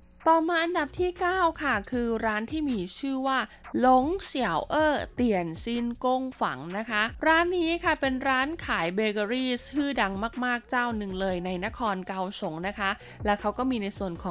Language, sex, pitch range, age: Thai, female, 195-255 Hz, 20-39